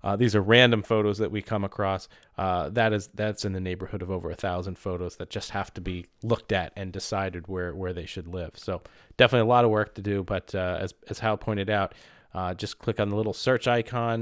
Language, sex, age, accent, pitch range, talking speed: English, male, 30-49, American, 95-115 Hz, 245 wpm